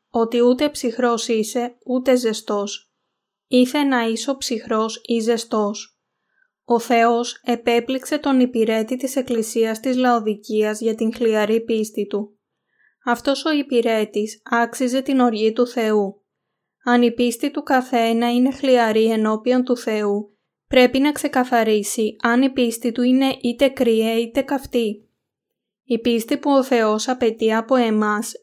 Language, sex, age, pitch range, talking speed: Greek, female, 20-39, 220-255 Hz, 135 wpm